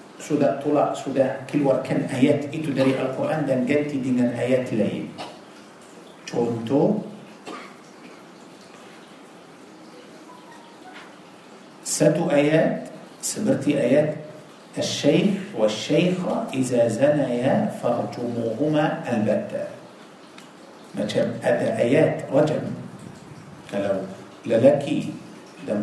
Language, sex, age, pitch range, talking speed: Malay, male, 50-69, 125-165 Hz, 70 wpm